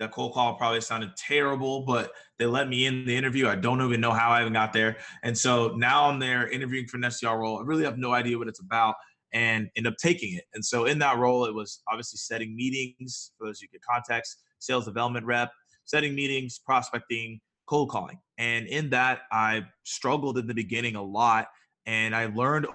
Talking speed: 215 wpm